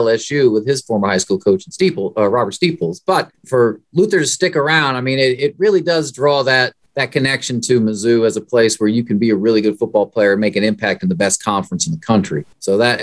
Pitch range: 115-165 Hz